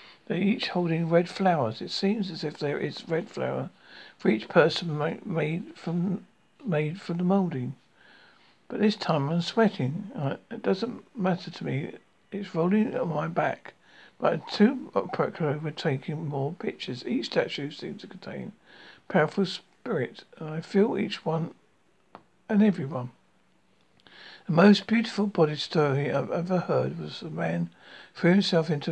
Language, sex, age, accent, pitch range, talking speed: English, male, 60-79, British, 145-190 Hz, 150 wpm